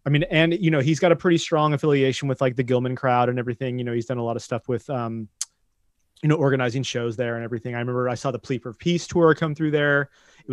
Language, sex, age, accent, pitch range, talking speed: English, male, 30-49, American, 120-150 Hz, 275 wpm